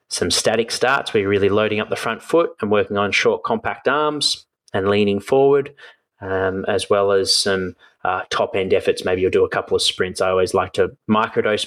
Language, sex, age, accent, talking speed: English, male, 20-39, Australian, 205 wpm